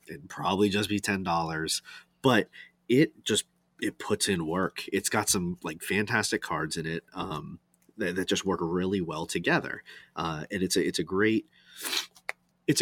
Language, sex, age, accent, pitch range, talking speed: English, male, 30-49, American, 85-100 Hz, 170 wpm